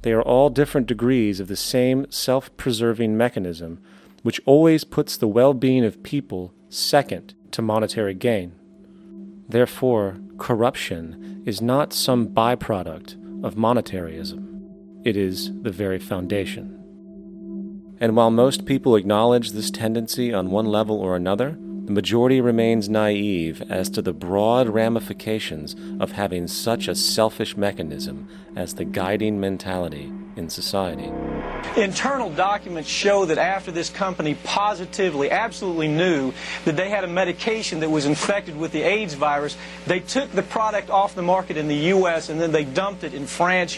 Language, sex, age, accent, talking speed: English, male, 30-49, American, 150 wpm